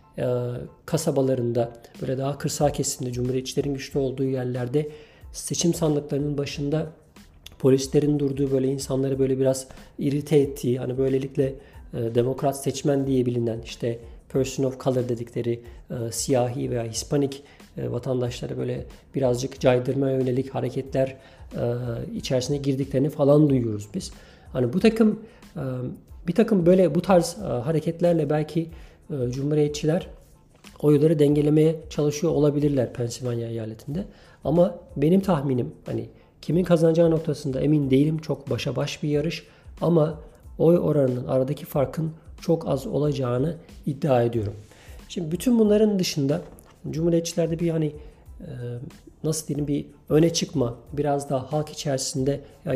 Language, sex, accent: Turkish, male, native